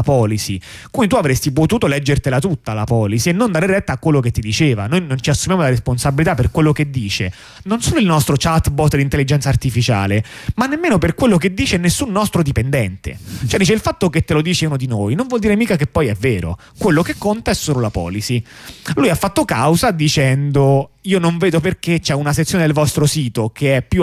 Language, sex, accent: Italian, male, native